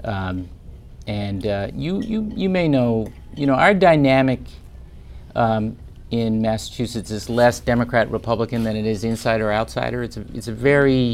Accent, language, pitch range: American, English, 90-115 Hz